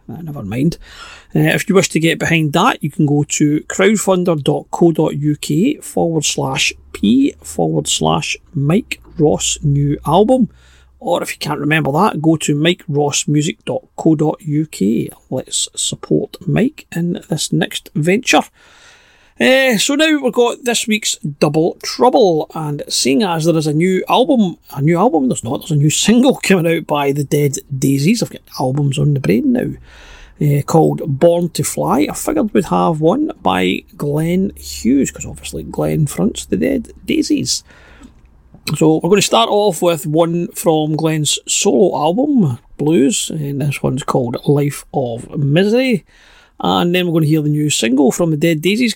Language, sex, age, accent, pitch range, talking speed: English, male, 40-59, British, 145-205 Hz, 165 wpm